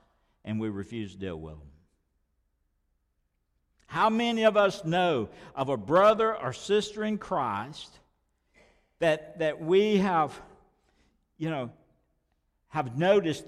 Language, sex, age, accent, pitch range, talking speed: English, male, 60-79, American, 120-175 Hz, 120 wpm